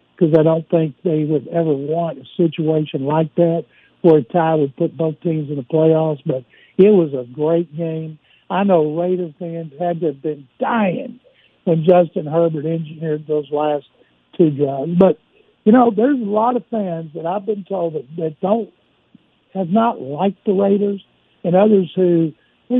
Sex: male